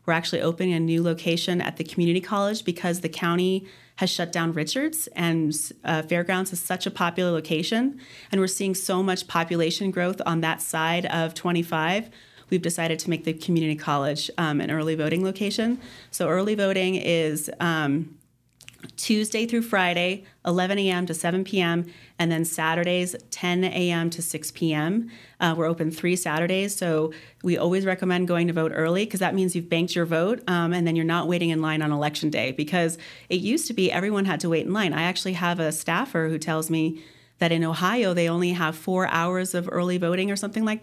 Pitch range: 165-185 Hz